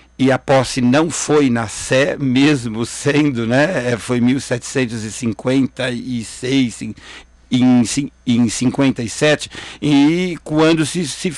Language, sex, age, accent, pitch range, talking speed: Portuguese, male, 60-79, Brazilian, 120-140 Hz, 110 wpm